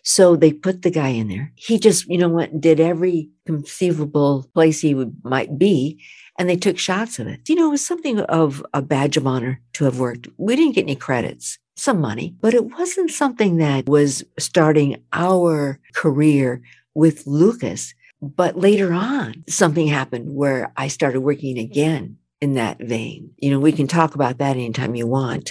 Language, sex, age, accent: English, female, 60-79, American